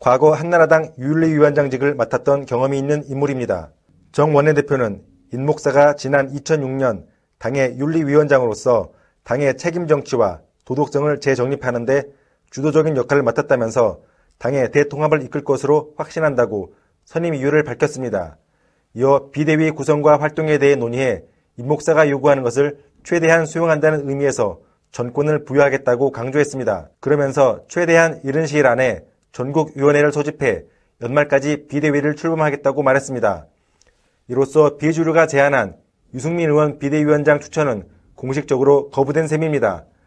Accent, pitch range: native, 135-155 Hz